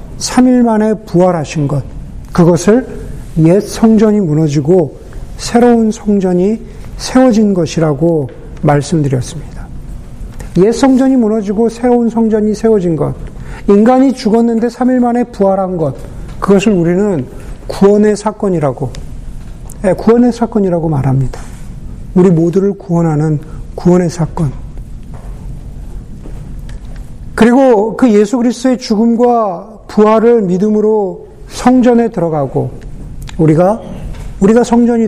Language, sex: Korean, male